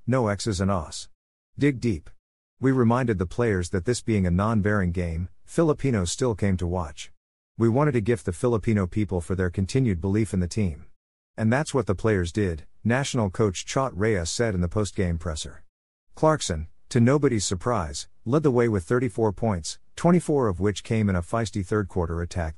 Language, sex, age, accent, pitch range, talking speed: English, male, 50-69, American, 90-115 Hz, 185 wpm